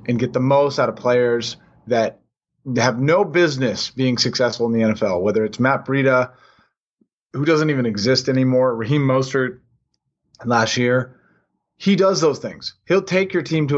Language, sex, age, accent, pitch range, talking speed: English, male, 20-39, American, 125-170 Hz, 165 wpm